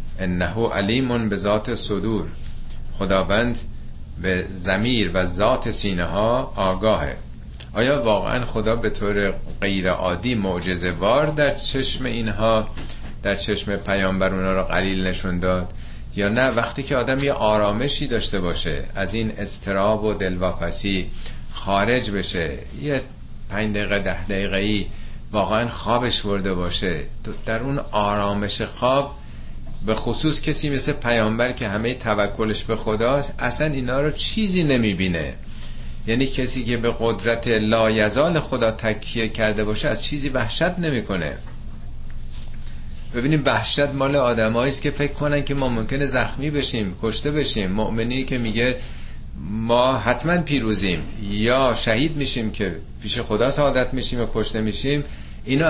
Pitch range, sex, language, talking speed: 95-125 Hz, male, Persian, 135 wpm